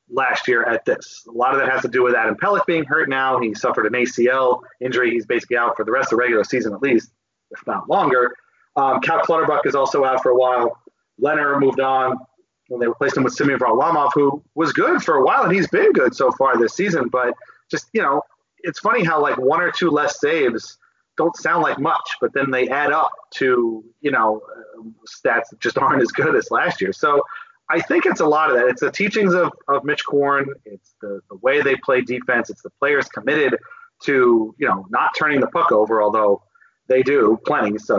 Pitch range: 125-185 Hz